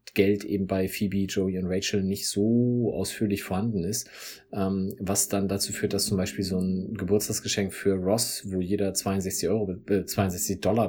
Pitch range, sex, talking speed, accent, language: 95-110 Hz, male, 175 wpm, German, German